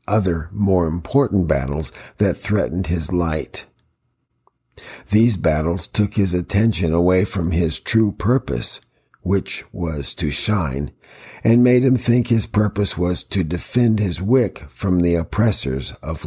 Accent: American